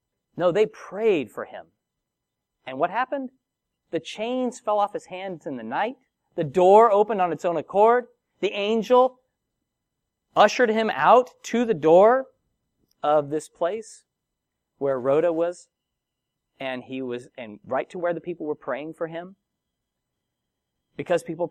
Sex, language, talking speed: male, English, 150 wpm